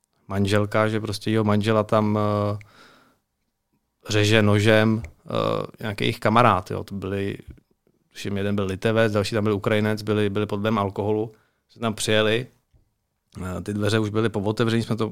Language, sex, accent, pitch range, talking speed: Czech, male, native, 110-120 Hz, 150 wpm